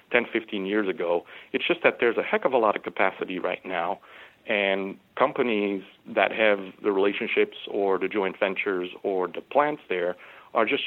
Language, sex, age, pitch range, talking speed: English, male, 40-59, 100-130 Hz, 180 wpm